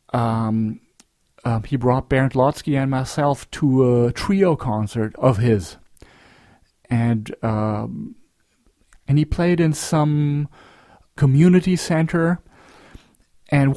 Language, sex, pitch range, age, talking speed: English, male, 125-160 Hz, 40-59, 105 wpm